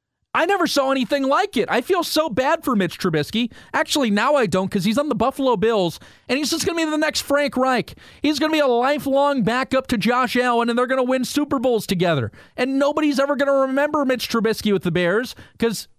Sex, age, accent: male, 40-59, American